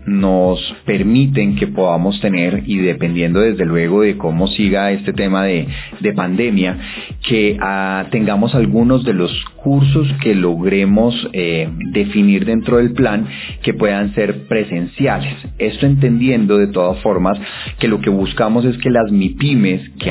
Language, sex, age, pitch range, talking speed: Spanish, male, 30-49, 95-120 Hz, 145 wpm